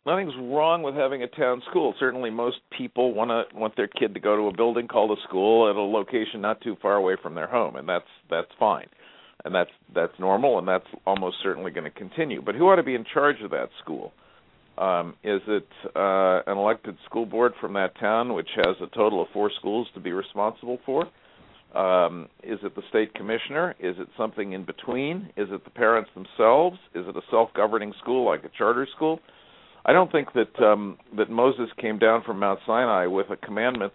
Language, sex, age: English, male, 50-69